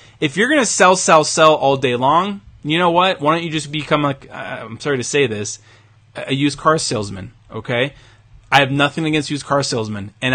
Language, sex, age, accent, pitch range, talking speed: English, male, 20-39, American, 115-150 Hz, 215 wpm